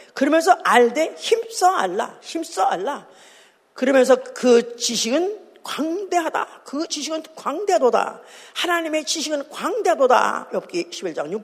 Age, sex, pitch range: 40-59, female, 215-335 Hz